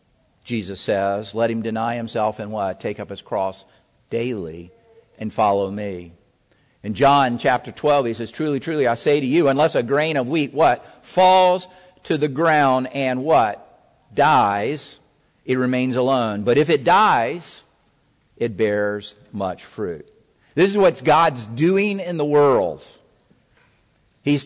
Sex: male